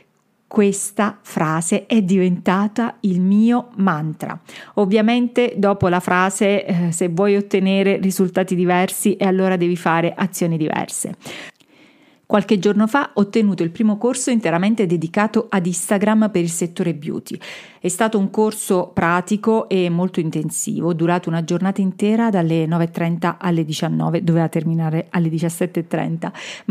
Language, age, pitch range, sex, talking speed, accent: Italian, 40-59, 175-220 Hz, female, 130 wpm, native